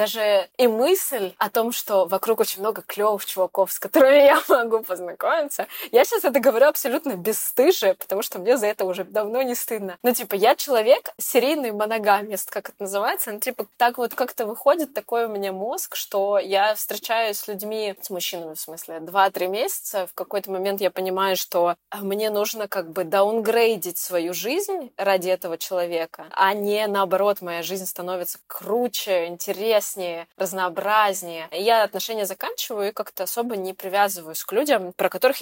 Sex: female